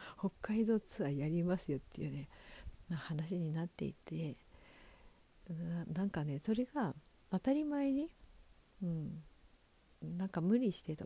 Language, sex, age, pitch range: Japanese, female, 50-69, 145-180 Hz